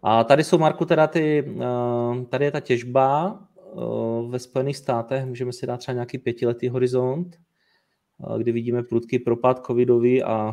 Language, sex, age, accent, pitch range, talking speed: Czech, male, 30-49, native, 110-125 Hz, 150 wpm